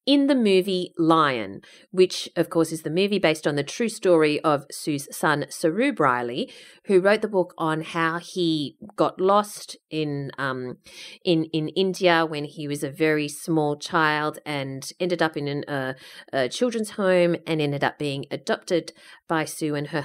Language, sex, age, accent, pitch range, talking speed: English, female, 30-49, Australian, 150-190 Hz, 170 wpm